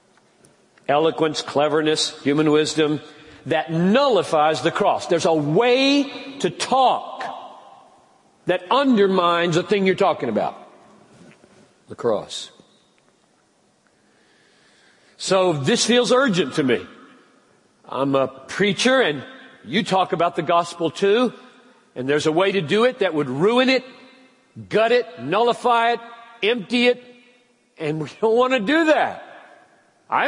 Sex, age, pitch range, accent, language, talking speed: male, 50-69, 155-235 Hz, American, English, 125 wpm